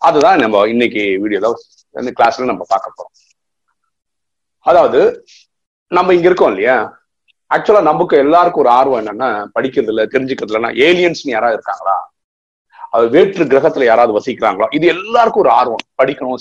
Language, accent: Tamil, native